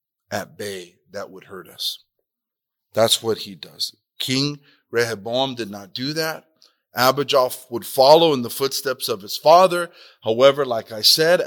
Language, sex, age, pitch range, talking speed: English, male, 40-59, 135-185 Hz, 150 wpm